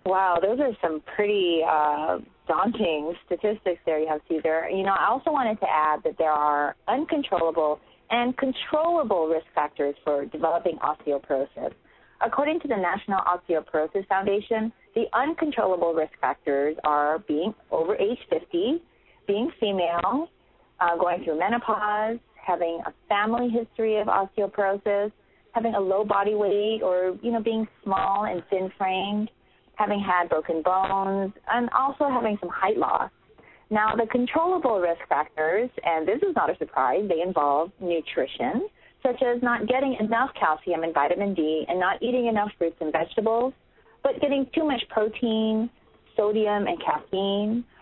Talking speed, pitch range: 145 wpm, 170-235 Hz